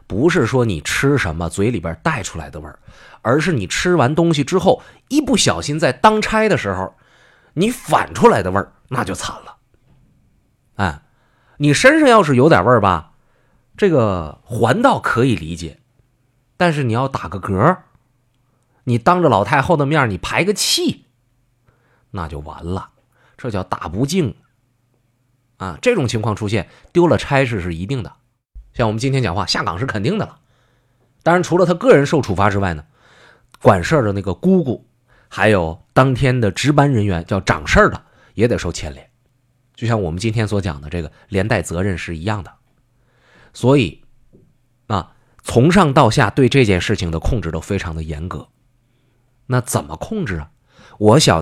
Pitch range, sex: 100-140 Hz, male